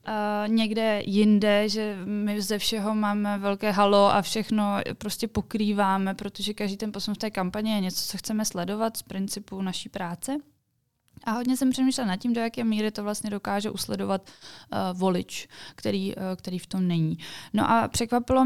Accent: native